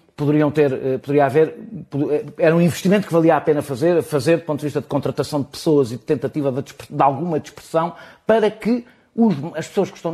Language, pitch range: Portuguese, 130-170 Hz